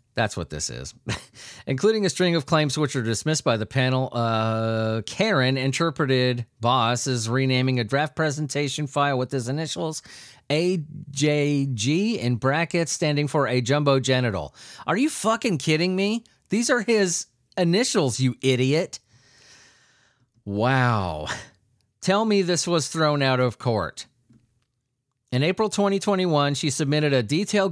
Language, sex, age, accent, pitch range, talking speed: English, male, 30-49, American, 125-170 Hz, 135 wpm